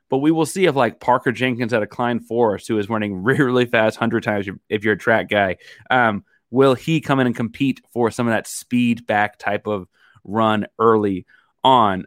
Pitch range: 110-140 Hz